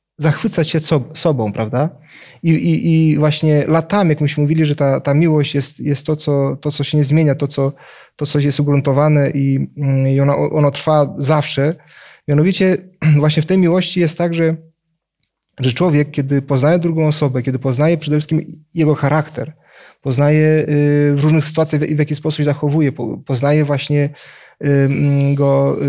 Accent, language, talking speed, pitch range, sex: native, Polish, 170 wpm, 145-160 Hz, male